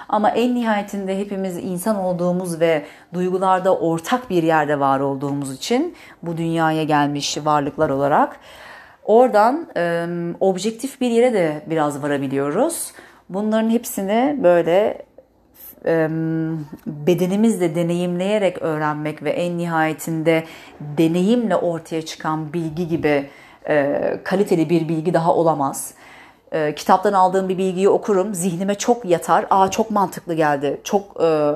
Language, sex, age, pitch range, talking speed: Turkish, female, 30-49, 165-205 Hz, 110 wpm